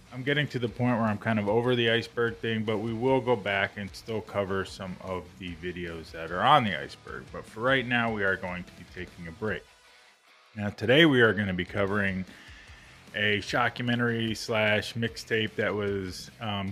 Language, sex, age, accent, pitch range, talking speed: English, male, 20-39, American, 95-115 Hz, 205 wpm